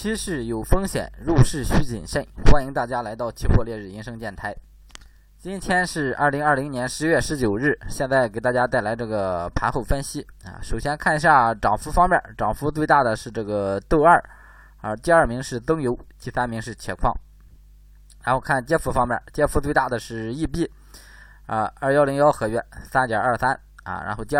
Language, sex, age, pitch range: Chinese, male, 20-39, 110-145 Hz